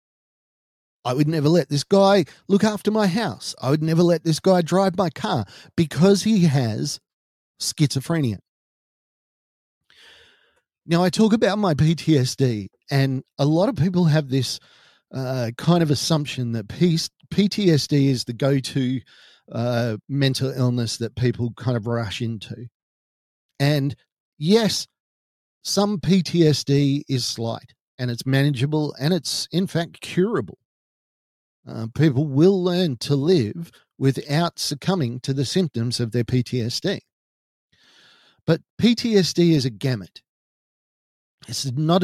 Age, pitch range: 40-59, 120-165 Hz